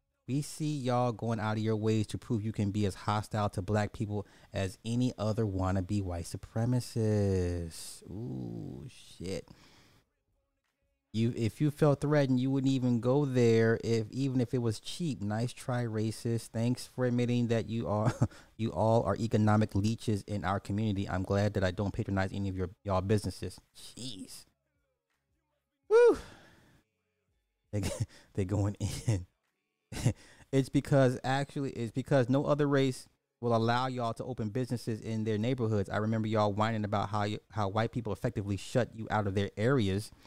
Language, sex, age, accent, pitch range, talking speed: English, male, 30-49, American, 100-125 Hz, 165 wpm